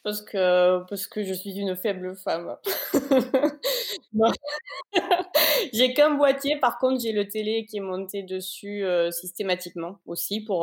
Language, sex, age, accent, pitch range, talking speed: French, female, 20-39, French, 185-240 Hz, 135 wpm